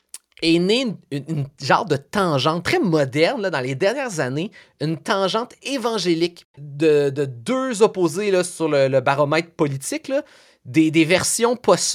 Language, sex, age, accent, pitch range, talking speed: French, male, 30-49, Canadian, 145-190 Hz, 150 wpm